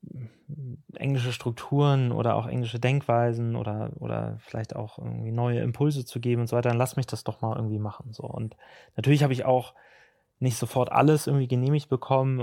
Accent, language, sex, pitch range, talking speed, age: German, German, male, 115-130 Hz, 185 wpm, 20-39